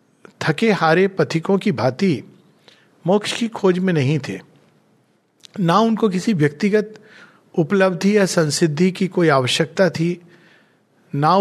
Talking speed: 120 wpm